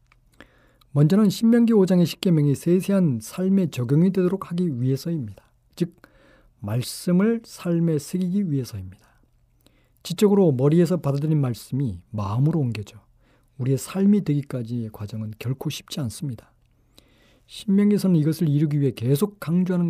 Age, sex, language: 40-59, male, Korean